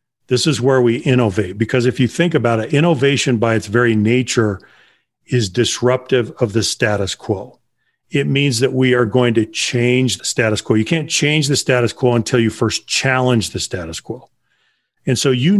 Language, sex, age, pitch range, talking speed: English, male, 40-59, 115-145 Hz, 190 wpm